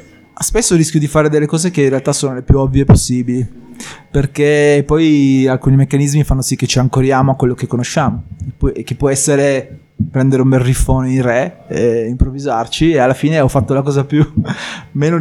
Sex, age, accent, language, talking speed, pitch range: male, 20-39, native, Italian, 180 wpm, 125-140 Hz